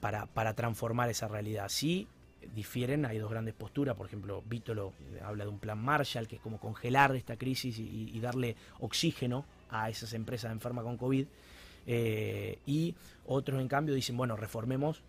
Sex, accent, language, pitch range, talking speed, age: male, Argentinian, Spanish, 110-130 Hz, 170 wpm, 20-39